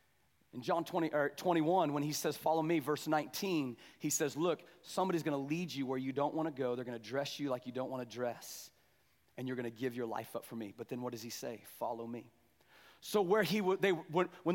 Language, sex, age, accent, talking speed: English, male, 30-49, American, 240 wpm